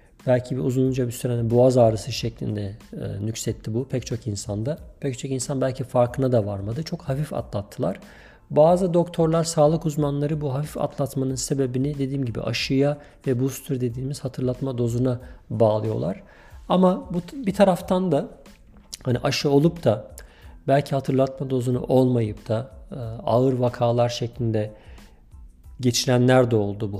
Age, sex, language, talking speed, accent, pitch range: 50-69, male, Turkish, 140 wpm, native, 110-140 Hz